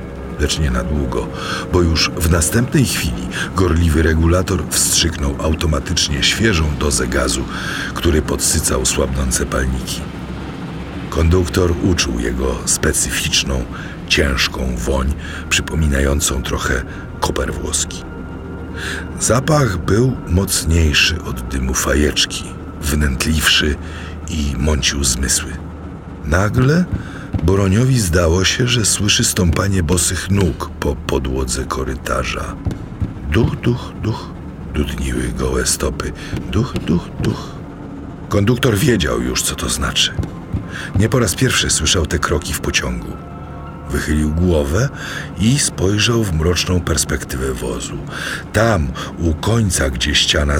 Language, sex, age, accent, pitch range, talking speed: Polish, male, 50-69, native, 70-90 Hz, 105 wpm